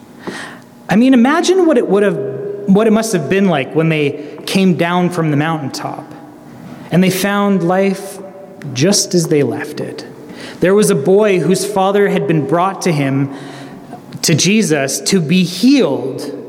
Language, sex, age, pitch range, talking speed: English, male, 30-49, 150-195 Hz, 165 wpm